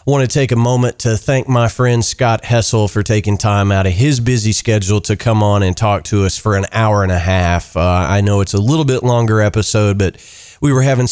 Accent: American